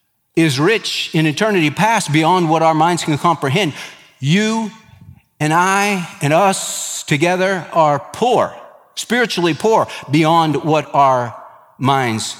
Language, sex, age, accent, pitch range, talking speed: English, male, 50-69, American, 130-180 Hz, 120 wpm